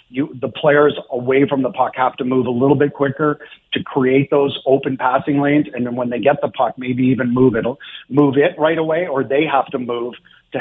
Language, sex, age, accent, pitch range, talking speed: English, male, 50-69, American, 125-145 Hz, 230 wpm